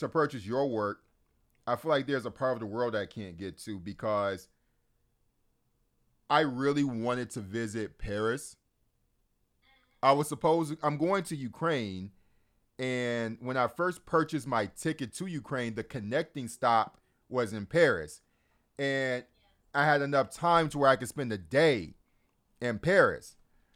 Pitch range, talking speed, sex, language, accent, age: 110-140 Hz, 150 wpm, male, English, American, 30-49